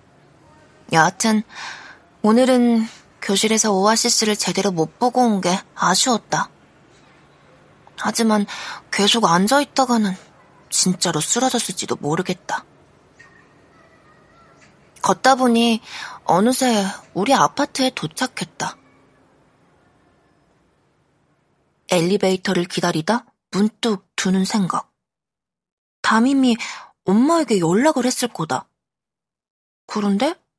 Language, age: Korean, 20-39